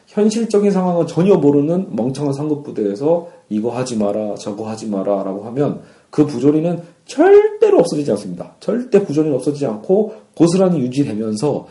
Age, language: 40-59, Korean